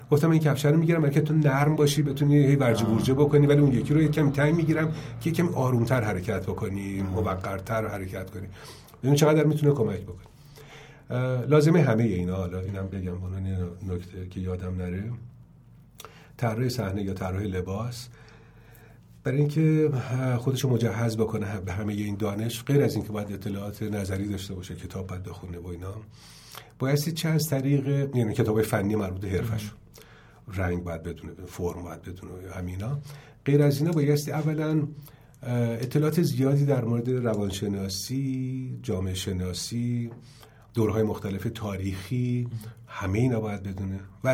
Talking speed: 155 wpm